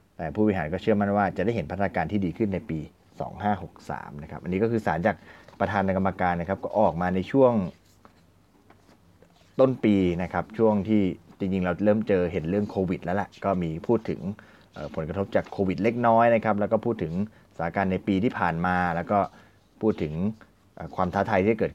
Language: Thai